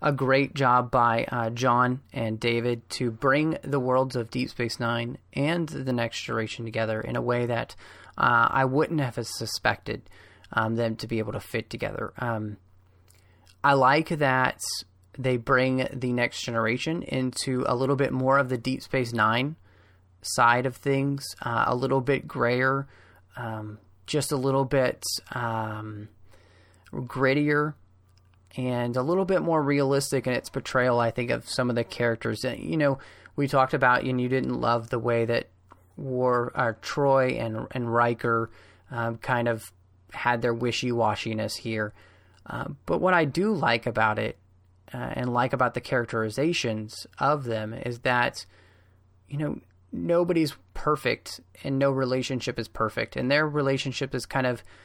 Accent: American